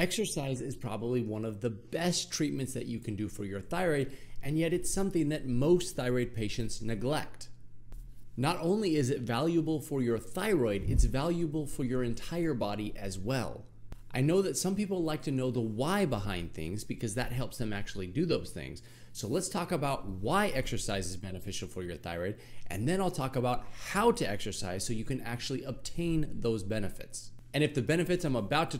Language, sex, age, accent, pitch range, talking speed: English, male, 30-49, American, 115-165 Hz, 195 wpm